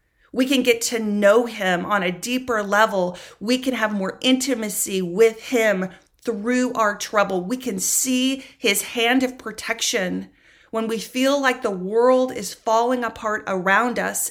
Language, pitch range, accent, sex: English, 195-230 Hz, American, female